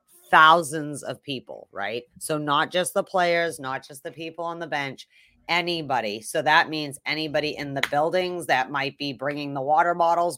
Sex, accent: female, American